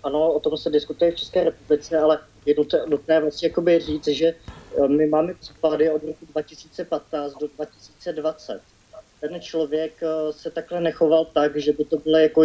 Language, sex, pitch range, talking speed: Slovak, male, 135-155 Hz, 170 wpm